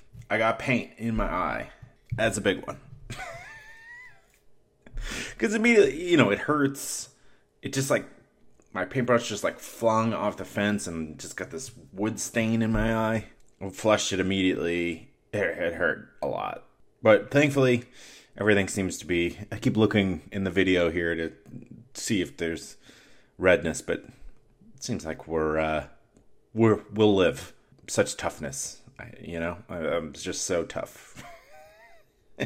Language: English